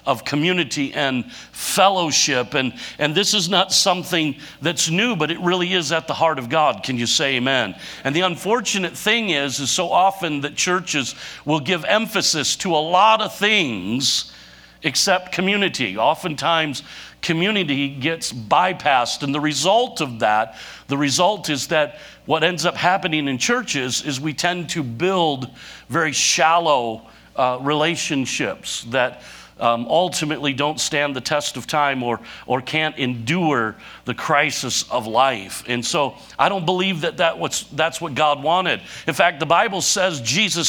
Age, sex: 50-69, male